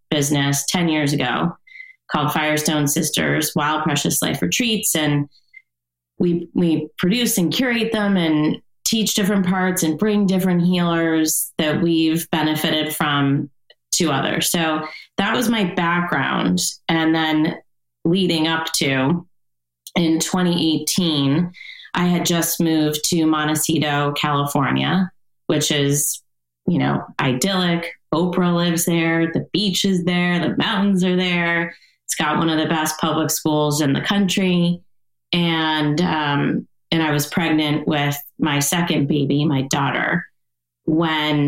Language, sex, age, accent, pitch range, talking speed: English, female, 20-39, American, 145-175 Hz, 130 wpm